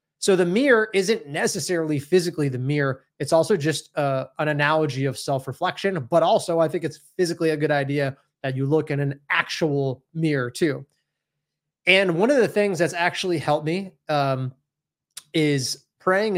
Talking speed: 165 wpm